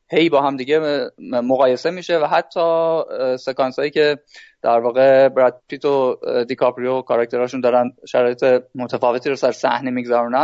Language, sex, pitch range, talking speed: Persian, male, 125-155 Hz, 140 wpm